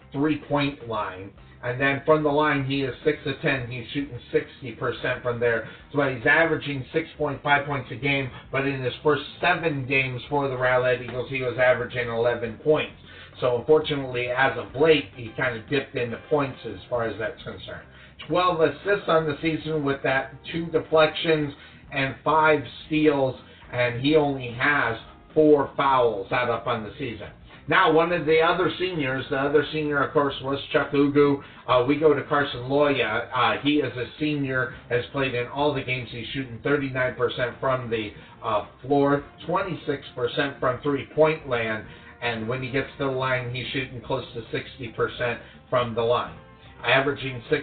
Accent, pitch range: American, 125-150 Hz